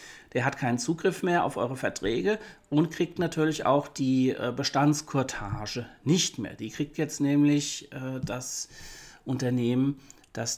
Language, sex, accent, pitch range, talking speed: German, male, German, 125-165 Hz, 130 wpm